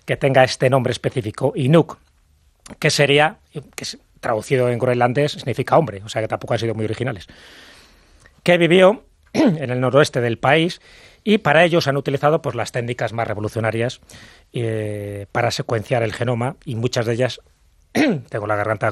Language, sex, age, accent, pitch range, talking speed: English, male, 30-49, Spanish, 115-145 Hz, 165 wpm